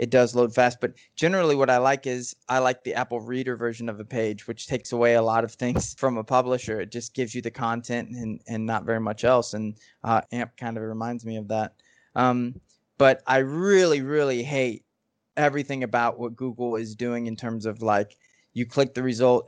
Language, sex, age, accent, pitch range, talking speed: English, male, 20-39, American, 115-135 Hz, 215 wpm